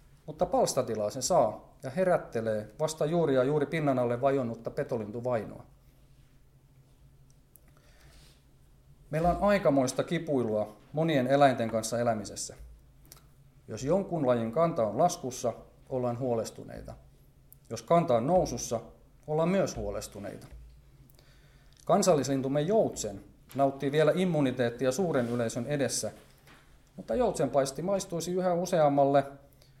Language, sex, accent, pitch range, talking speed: Finnish, male, native, 120-155 Hz, 105 wpm